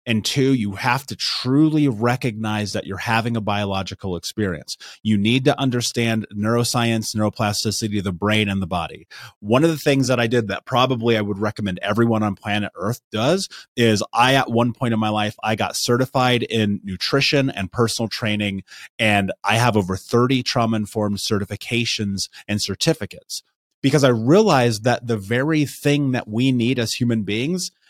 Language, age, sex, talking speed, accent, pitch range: English, 30-49, male, 170 wpm, American, 110-130 Hz